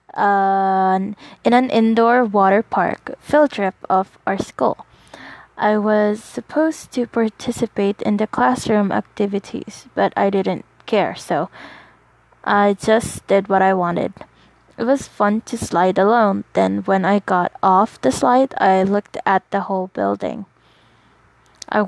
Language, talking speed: English, 140 wpm